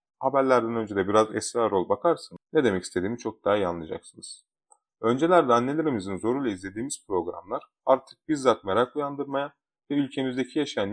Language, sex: Turkish, male